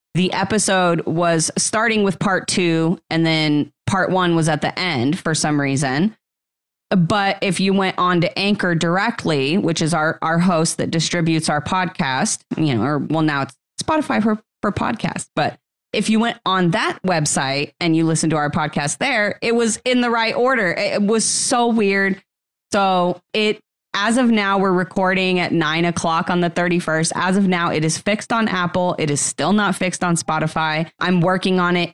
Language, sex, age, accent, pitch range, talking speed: English, female, 30-49, American, 160-205 Hz, 190 wpm